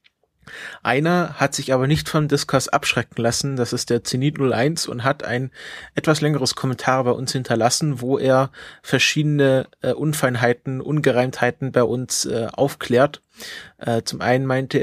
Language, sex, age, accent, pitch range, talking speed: German, male, 20-39, German, 125-140 Hz, 150 wpm